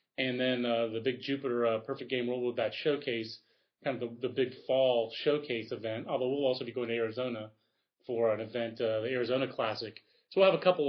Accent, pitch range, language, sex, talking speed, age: American, 120-145 Hz, English, male, 220 wpm, 30-49